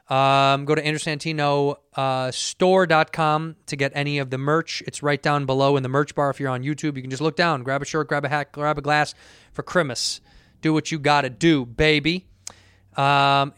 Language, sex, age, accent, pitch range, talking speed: English, male, 20-39, American, 135-155 Hz, 210 wpm